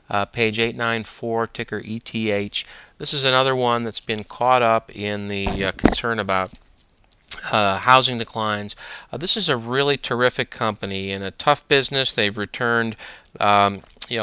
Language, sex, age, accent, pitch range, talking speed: English, male, 40-59, American, 105-125 Hz, 160 wpm